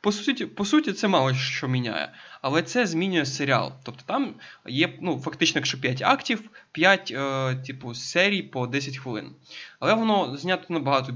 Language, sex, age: Ukrainian, male, 20-39